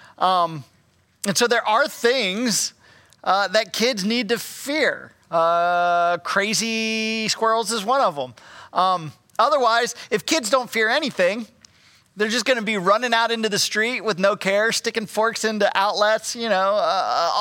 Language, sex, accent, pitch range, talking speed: English, male, American, 185-245 Hz, 160 wpm